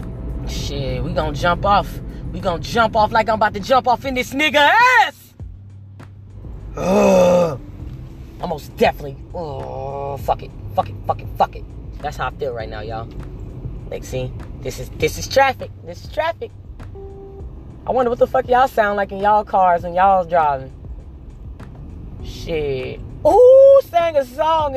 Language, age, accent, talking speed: English, 20-39, American, 160 wpm